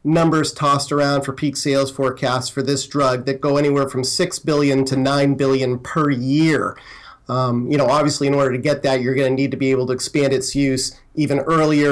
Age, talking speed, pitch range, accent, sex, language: 40-59, 215 wpm, 130-150 Hz, American, male, English